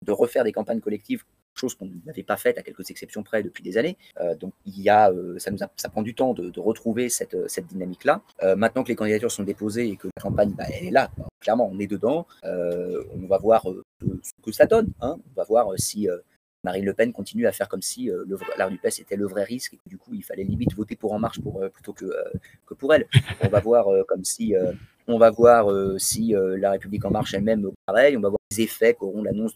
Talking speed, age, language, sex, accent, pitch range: 270 wpm, 30-49, French, male, French, 95-130 Hz